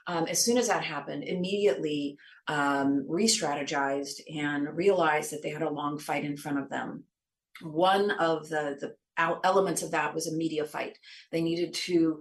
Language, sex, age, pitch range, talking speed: English, female, 30-49, 150-175 Hz, 170 wpm